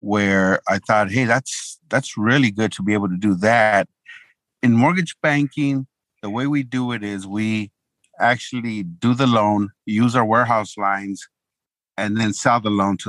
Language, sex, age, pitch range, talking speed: English, male, 50-69, 100-120 Hz, 175 wpm